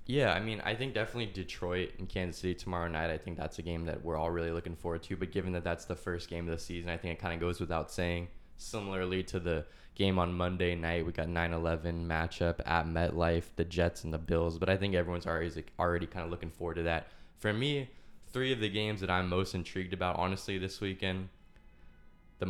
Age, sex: 20-39, male